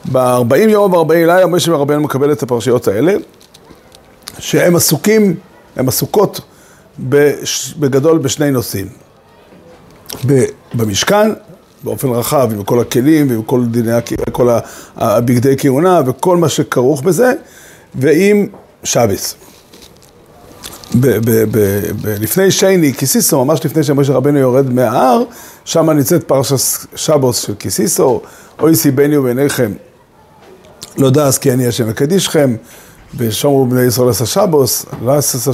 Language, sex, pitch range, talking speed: Hebrew, male, 125-170 Hz, 115 wpm